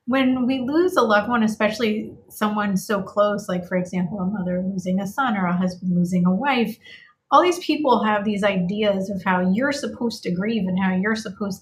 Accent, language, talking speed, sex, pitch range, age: American, English, 205 wpm, female, 185-235 Hz, 30-49